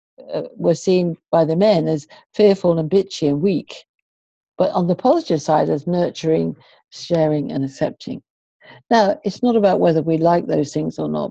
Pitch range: 145-180 Hz